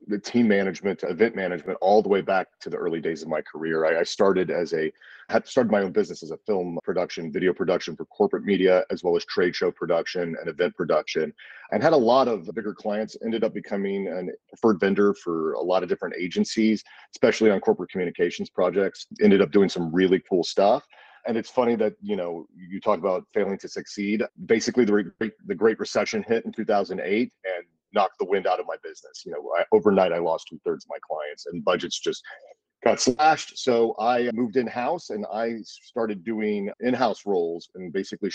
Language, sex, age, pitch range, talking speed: English, male, 40-59, 95-125 Hz, 210 wpm